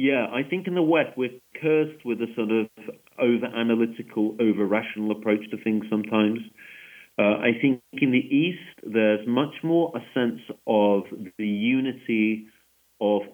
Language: English